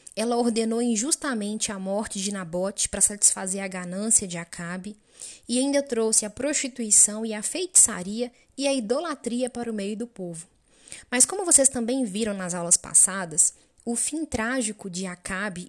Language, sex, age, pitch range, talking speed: Portuguese, female, 10-29, 195-255 Hz, 160 wpm